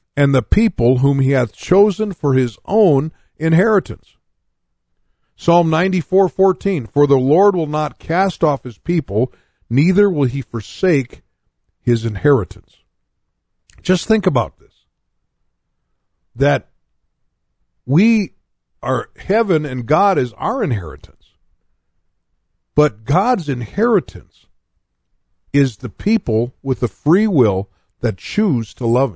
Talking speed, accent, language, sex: 115 wpm, American, English, male